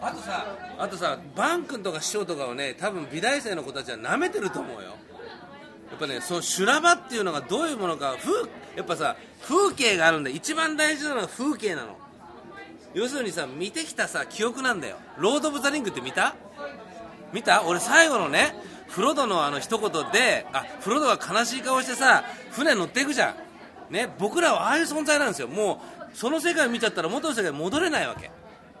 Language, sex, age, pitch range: Japanese, male, 40-59, 185-290 Hz